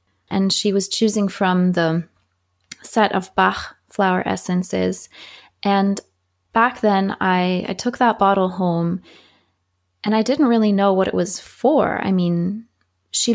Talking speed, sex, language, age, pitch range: 145 wpm, female, English, 20-39, 180-215 Hz